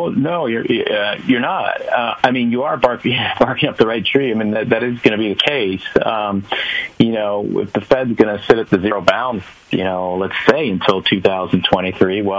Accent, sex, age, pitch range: American, male, 40-59, 90-100 Hz